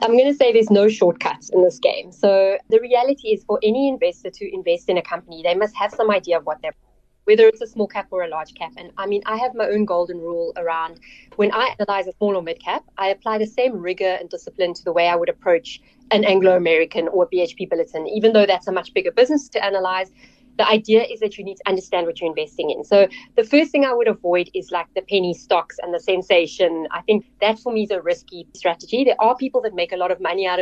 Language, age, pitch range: English, 20-39, 180-240 Hz